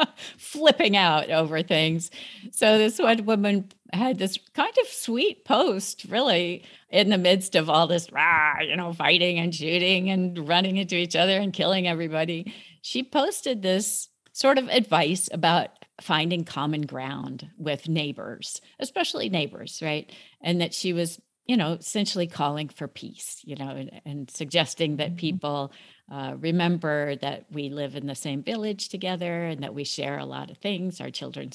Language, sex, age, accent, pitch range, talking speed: English, female, 50-69, American, 165-230 Hz, 165 wpm